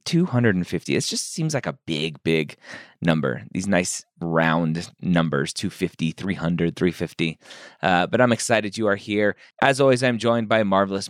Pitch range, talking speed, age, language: 85-115 Hz, 160 wpm, 30-49, English